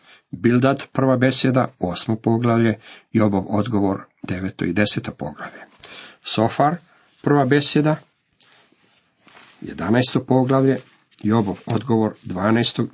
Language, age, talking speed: Croatian, 50-69, 90 wpm